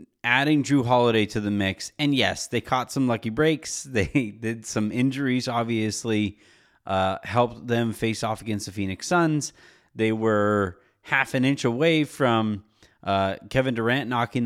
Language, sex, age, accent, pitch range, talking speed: English, male, 30-49, American, 110-145 Hz, 160 wpm